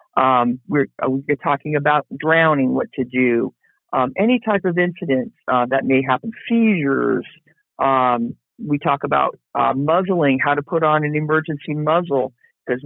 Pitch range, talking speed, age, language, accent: 135-165 Hz, 155 wpm, 50-69, English, American